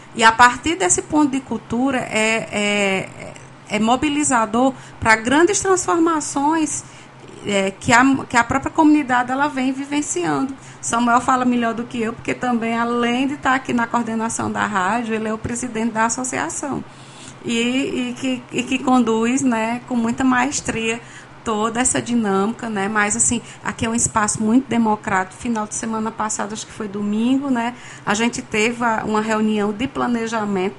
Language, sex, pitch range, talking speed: Portuguese, female, 205-250 Hz, 155 wpm